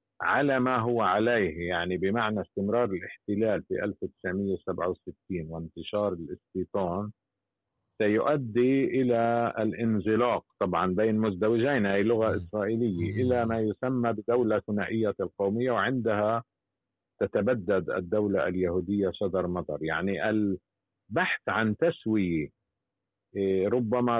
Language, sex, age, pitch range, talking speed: Arabic, male, 50-69, 95-115 Hz, 95 wpm